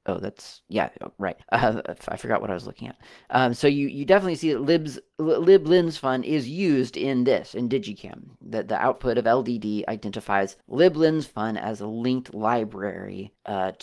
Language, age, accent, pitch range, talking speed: English, 40-59, American, 105-135 Hz, 190 wpm